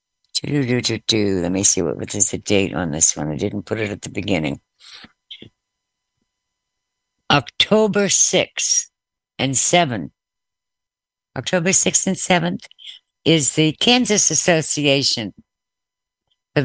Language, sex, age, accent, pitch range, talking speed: English, female, 60-79, American, 110-150 Hz, 110 wpm